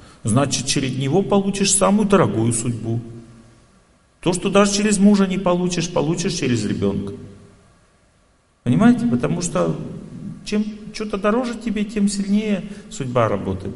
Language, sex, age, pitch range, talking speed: Russian, male, 40-59, 100-130 Hz, 120 wpm